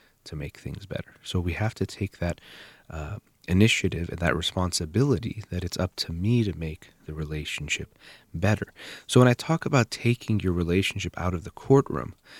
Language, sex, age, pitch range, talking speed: English, male, 30-49, 85-110 Hz, 180 wpm